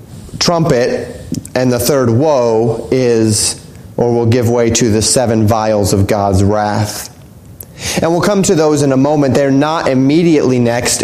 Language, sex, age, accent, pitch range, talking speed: English, male, 30-49, American, 125-165 Hz, 160 wpm